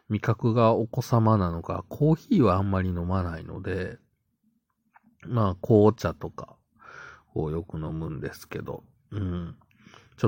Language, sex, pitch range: Japanese, male, 85-120 Hz